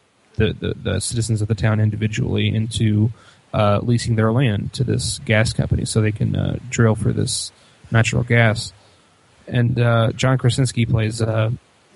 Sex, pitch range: male, 105-120 Hz